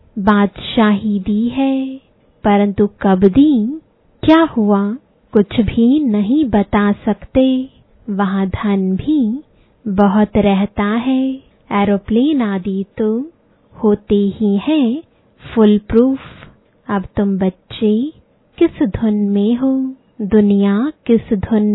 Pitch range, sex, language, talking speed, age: 205-260 Hz, female, English, 100 wpm, 20-39